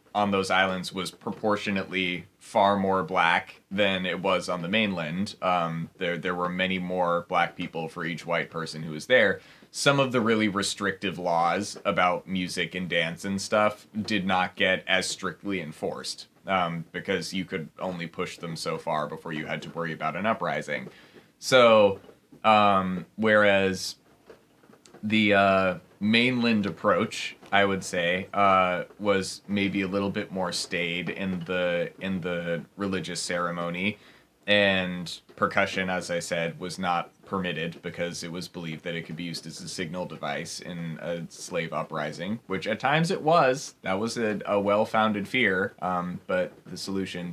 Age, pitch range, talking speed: 20-39, 85-100 Hz, 160 wpm